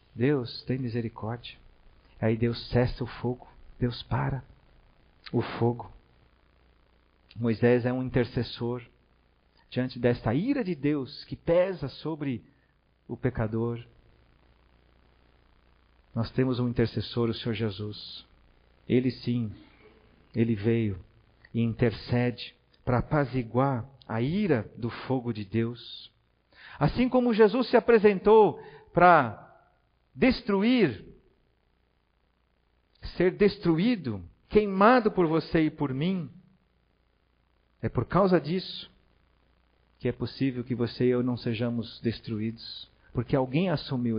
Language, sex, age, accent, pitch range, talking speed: Portuguese, male, 50-69, Brazilian, 110-145 Hz, 105 wpm